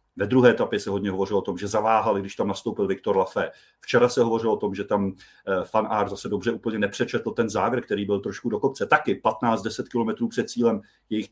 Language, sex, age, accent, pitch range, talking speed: Czech, male, 40-59, native, 115-135 Hz, 210 wpm